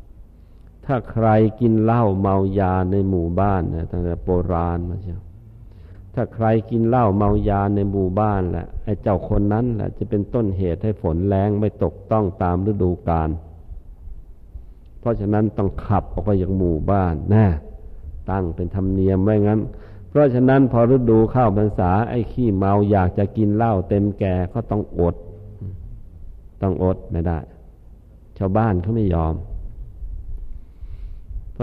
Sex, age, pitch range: male, 50-69, 90-110 Hz